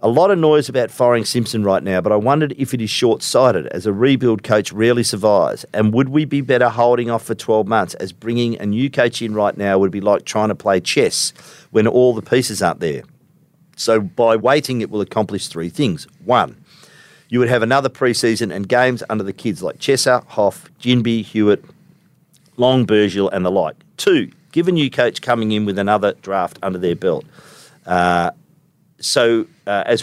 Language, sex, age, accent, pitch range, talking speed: English, male, 50-69, Australian, 100-135 Hz, 200 wpm